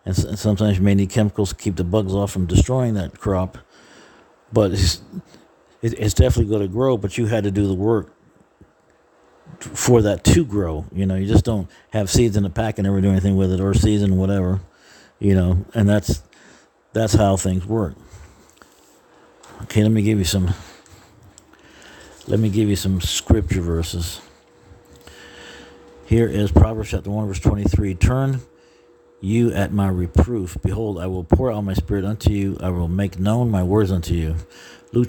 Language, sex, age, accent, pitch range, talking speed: English, male, 50-69, American, 95-110 Hz, 175 wpm